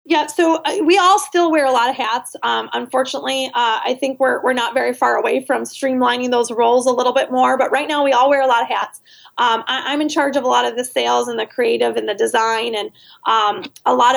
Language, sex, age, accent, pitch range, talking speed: English, female, 30-49, American, 235-285 Hz, 255 wpm